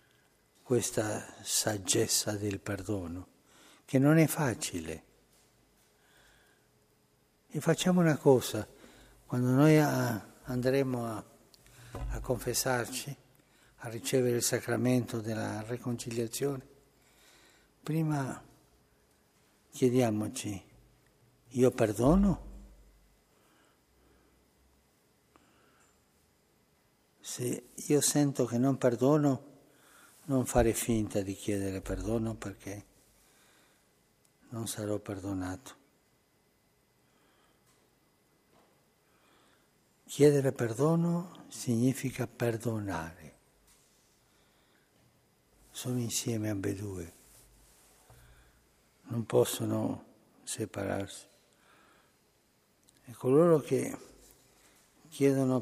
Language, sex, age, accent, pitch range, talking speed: Italian, male, 60-79, native, 100-135 Hz, 65 wpm